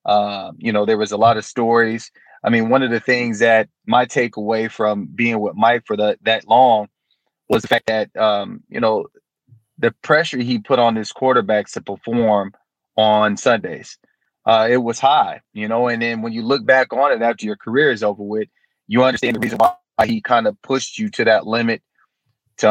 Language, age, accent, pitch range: English, 30-49, American, 110-125 Hz